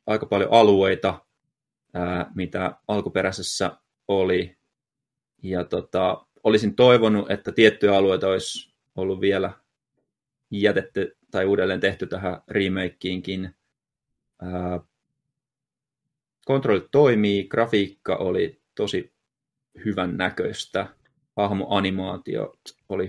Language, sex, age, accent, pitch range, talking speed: Finnish, male, 20-39, native, 95-110 Hz, 85 wpm